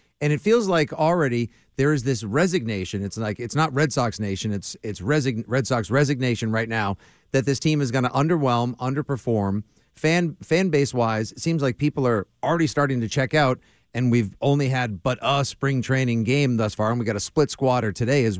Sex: male